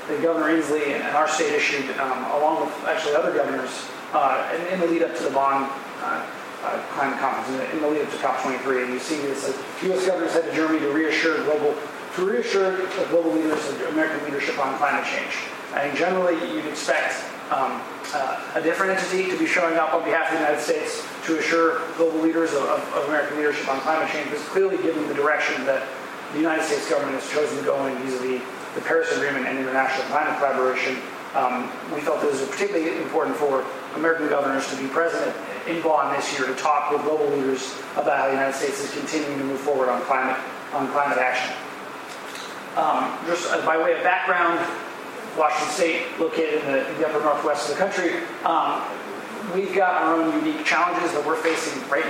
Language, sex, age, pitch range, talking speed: English, male, 30-49, 140-165 Hz, 200 wpm